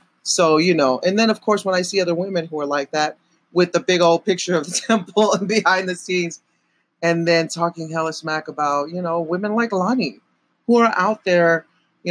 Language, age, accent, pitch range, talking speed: English, 30-49, American, 160-195 Hz, 220 wpm